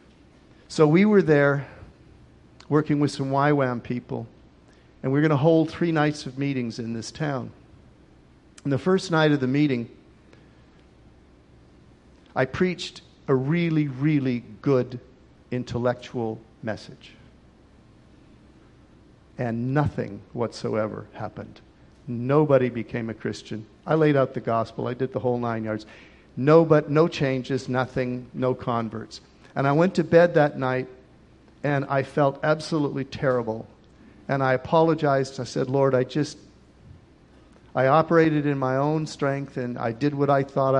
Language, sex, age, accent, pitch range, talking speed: English, male, 50-69, American, 115-150 Hz, 135 wpm